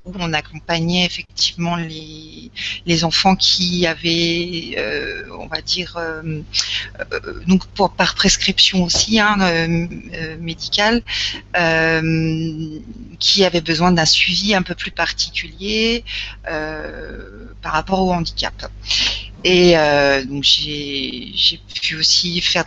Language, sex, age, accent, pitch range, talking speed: French, female, 40-59, French, 160-185 Hz, 110 wpm